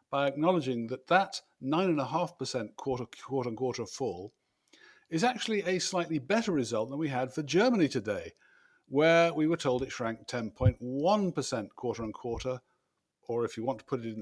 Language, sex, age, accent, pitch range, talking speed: English, male, 50-69, British, 120-160 Hz, 170 wpm